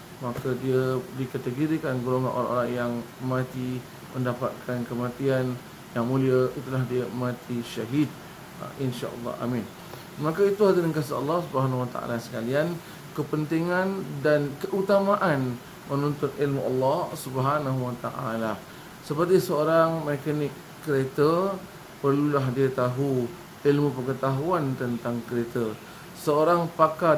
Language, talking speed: Malay, 100 wpm